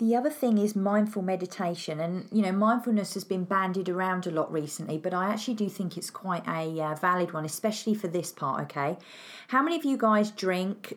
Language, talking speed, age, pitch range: English, 215 wpm, 40-59, 175-225 Hz